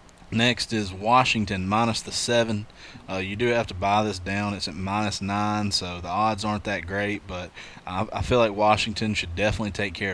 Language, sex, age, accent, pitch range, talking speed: English, male, 30-49, American, 95-110 Hz, 200 wpm